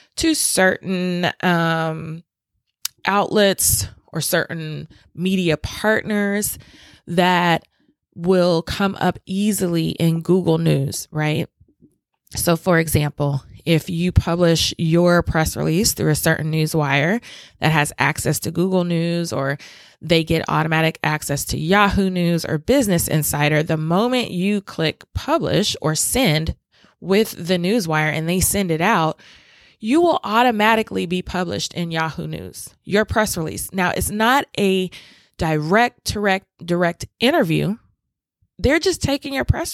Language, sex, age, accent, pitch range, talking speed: English, female, 20-39, American, 160-195 Hz, 130 wpm